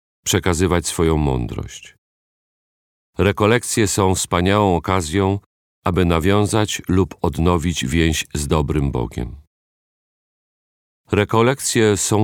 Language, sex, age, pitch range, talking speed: Polish, male, 40-59, 75-105 Hz, 85 wpm